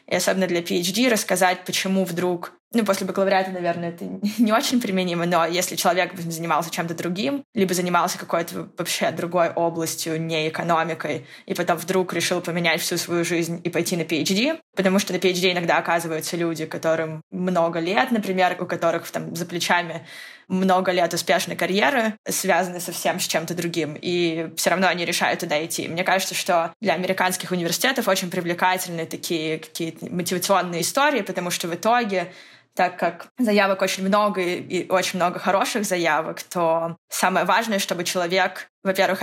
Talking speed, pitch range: 160 wpm, 170-190 Hz